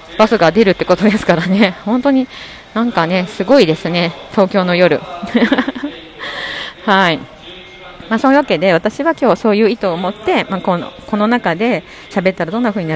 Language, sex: Japanese, female